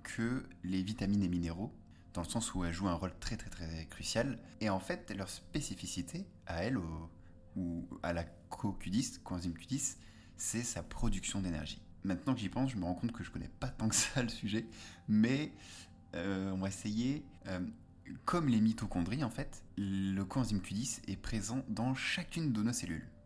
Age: 20-39